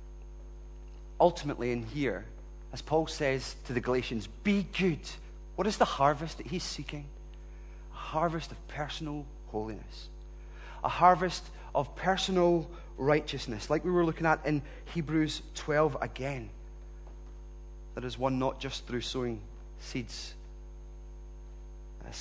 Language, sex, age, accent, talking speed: English, male, 30-49, British, 125 wpm